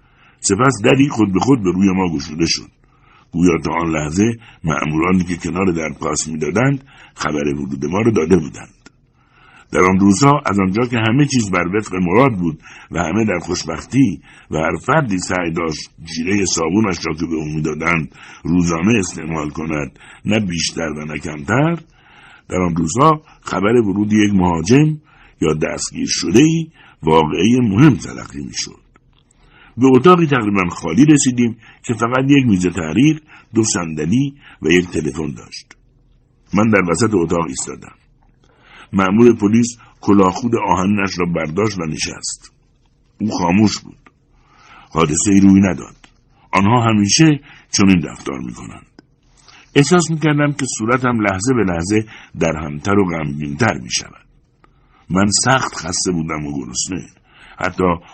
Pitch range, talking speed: 80-120 Hz, 140 wpm